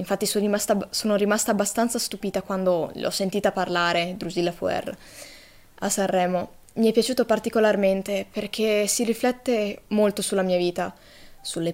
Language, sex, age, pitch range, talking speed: Italian, female, 20-39, 185-220 Hz, 140 wpm